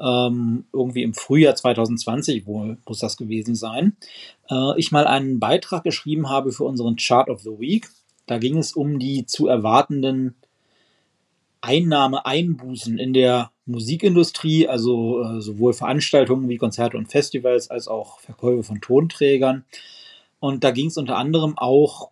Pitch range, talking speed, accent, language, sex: 120-150 Hz, 135 wpm, German, German, male